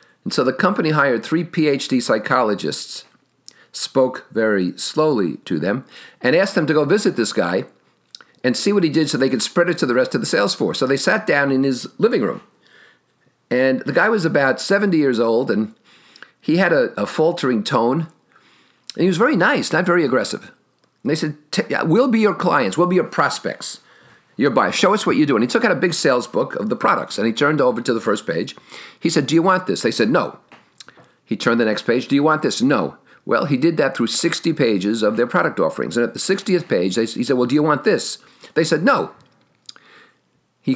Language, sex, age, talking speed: English, male, 50-69, 220 wpm